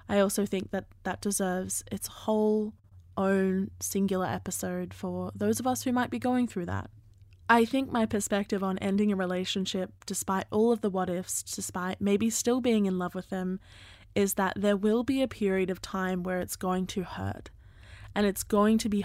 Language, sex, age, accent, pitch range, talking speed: English, female, 10-29, Australian, 180-215 Hz, 195 wpm